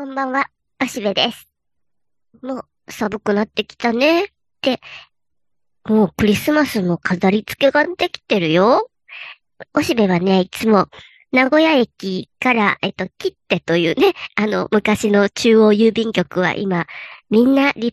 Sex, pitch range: male, 190-265 Hz